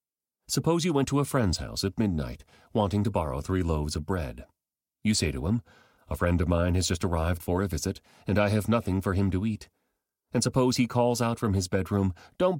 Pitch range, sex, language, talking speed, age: 85-110 Hz, male, English, 225 wpm, 40-59